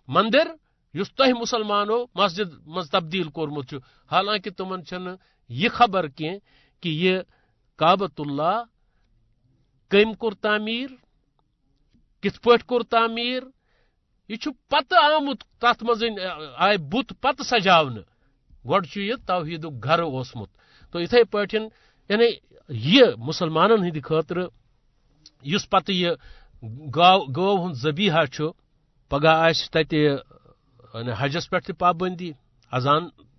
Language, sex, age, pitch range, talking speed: Urdu, male, 60-79, 140-205 Hz, 90 wpm